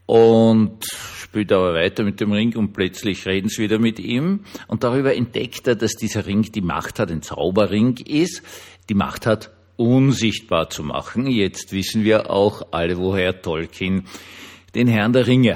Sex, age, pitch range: male, 50-69, 90-115 Hz